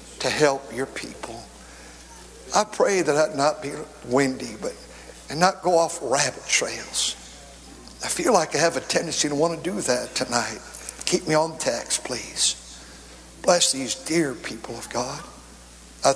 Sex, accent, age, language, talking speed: male, American, 60-79, English, 160 wpm